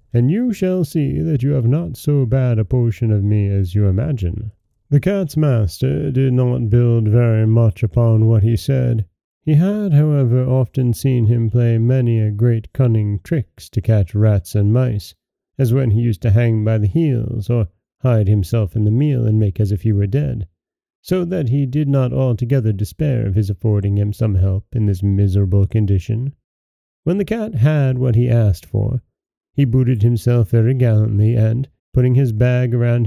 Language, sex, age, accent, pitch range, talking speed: English, male, 30-49, American, 105-135 Hz, 185 wpm